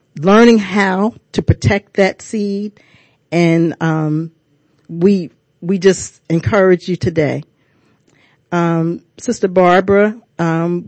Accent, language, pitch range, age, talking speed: American, English, 160-195 Hz, 40-59, 100 wpm